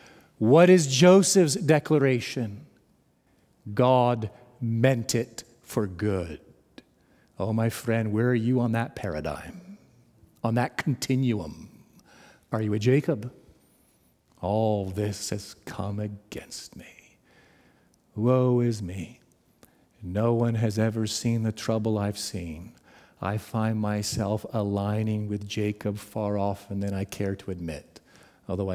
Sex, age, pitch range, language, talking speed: male, 50-69, 100-125 Hz, English, 120 wpm